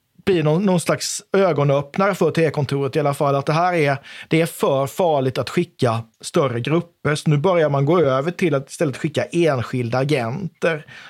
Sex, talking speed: male, 190 wpm